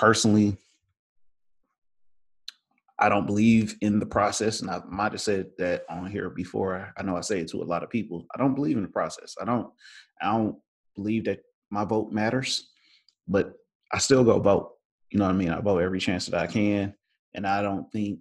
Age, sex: 30-49, male